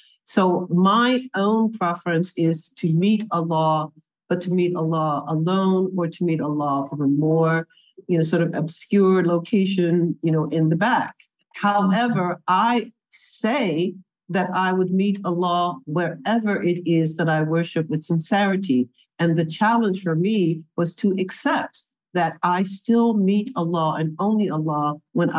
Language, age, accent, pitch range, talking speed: French, 50-69, American, 165-200 Hz, 150 wpm